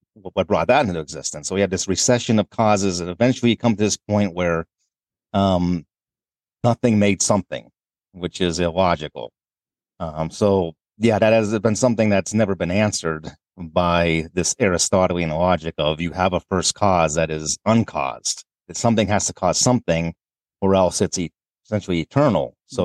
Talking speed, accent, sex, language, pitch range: 165 wpm, American, male, English, 85-105 Hz